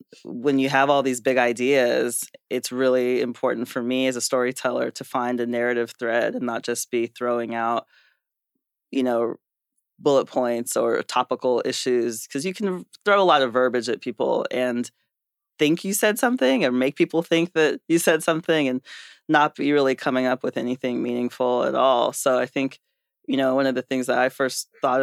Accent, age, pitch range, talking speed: American, 20-39, 120-135 Hz, 190 wpm